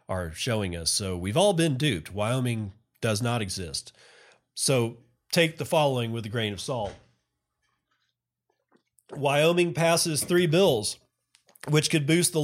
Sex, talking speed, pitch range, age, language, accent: male, 140 wpm, 105-140 Hz, 40-59, English, American